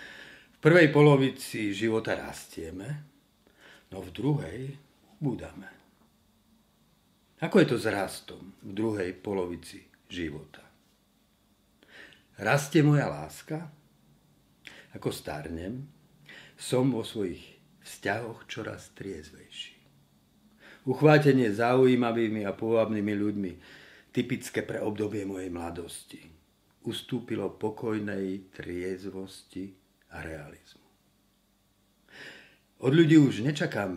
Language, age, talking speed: Slovak, 50-69, 85 wpm